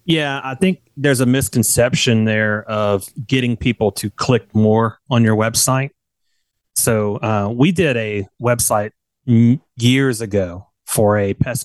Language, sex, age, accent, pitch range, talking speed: English, male, 30-49, American, 110-130 Hz, 140 wpm